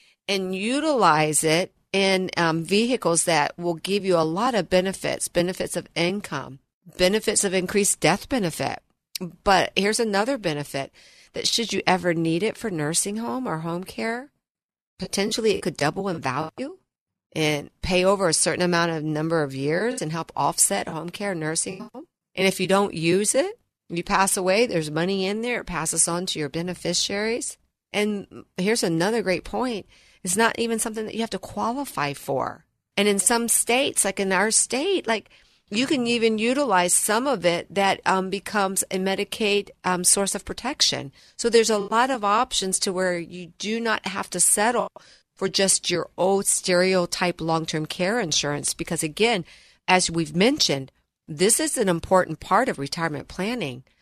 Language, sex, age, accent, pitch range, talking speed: English, female, 40-59, American, 170-210 Hz, 170 wpm